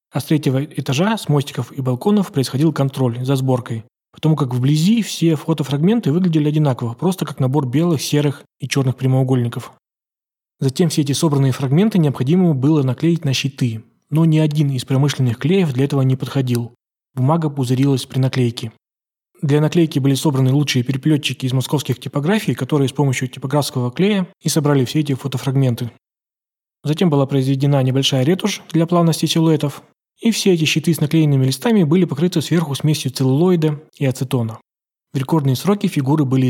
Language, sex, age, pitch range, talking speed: Russian, male, 20-39, 130-160 Hz, 160 wpm